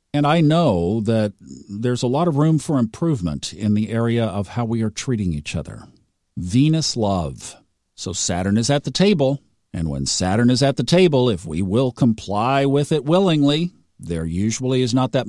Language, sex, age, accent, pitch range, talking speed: English, male, 50-69, American, 105-140 Hz, 190 wpm